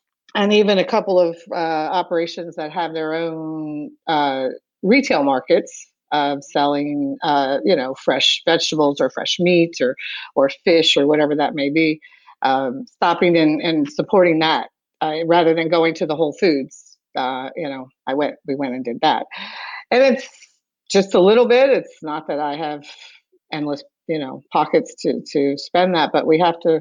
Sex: female